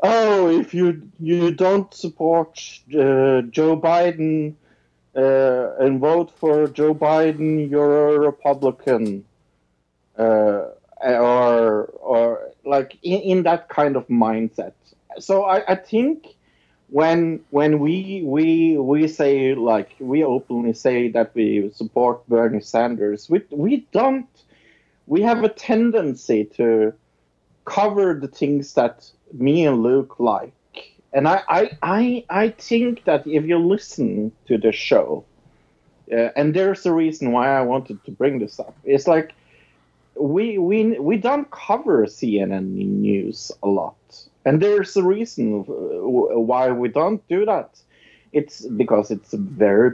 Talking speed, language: 135 wpm, English